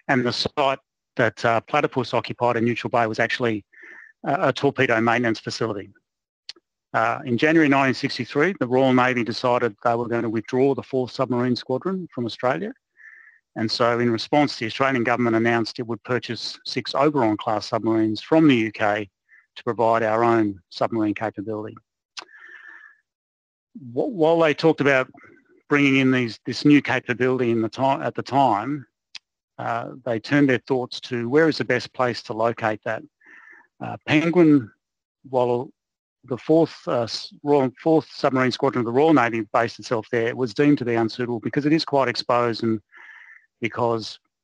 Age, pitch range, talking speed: 30-49, 115-140 Hz, 155 wpm